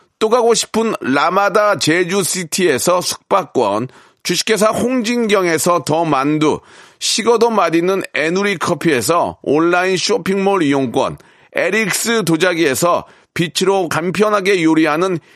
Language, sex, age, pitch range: Korean, male, 40-59, 175-220 Hz